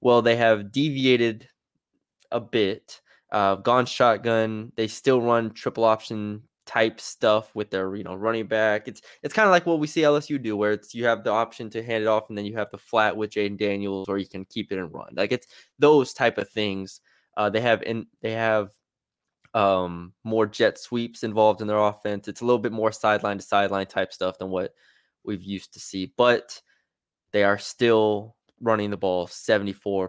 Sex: male